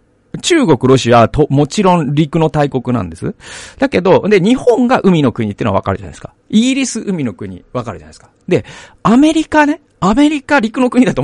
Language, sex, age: Japanese, male, 40-59